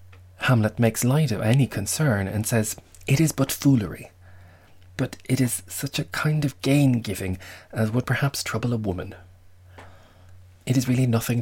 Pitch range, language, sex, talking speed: 90-120 Hz, English, male, 165 wpm